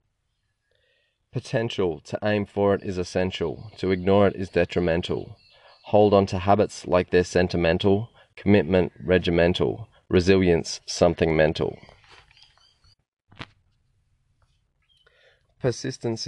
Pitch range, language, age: 90-100 Hz, English, 20-39